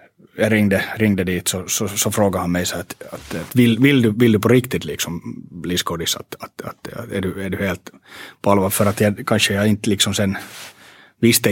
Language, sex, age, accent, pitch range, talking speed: Swedish, male, 30-49, Finnish, 95-120 Hz, 225 wpm